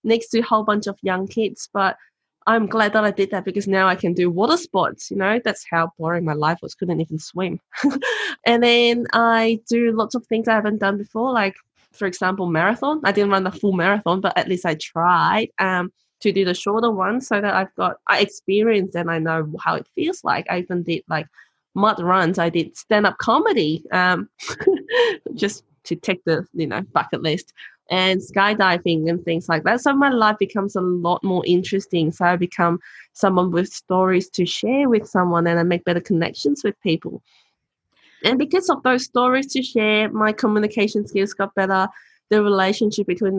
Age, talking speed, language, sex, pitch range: 20-39, 195 wpm, English, female, 180-220 Hz